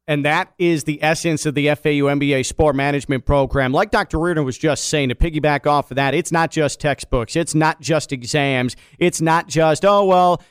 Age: 40-59